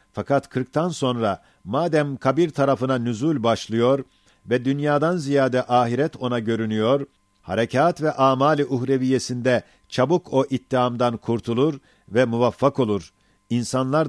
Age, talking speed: 50-69, 110 wpm